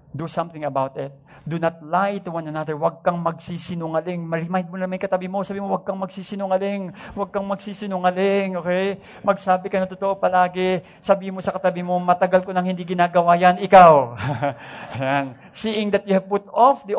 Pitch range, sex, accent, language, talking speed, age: 165-195 Hz, male, Filipino, English, 185 wpm, 50-69